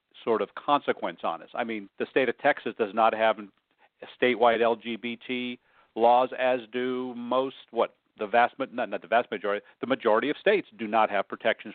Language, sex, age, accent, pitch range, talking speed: English, male, 50-69, American, 110-125 Hz, 190 wpm